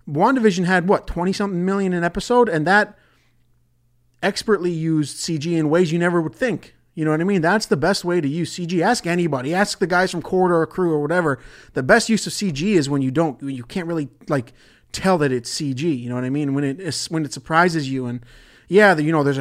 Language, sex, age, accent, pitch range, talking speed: English, male, 30-49, American, 135-175 Hz, 240 wpm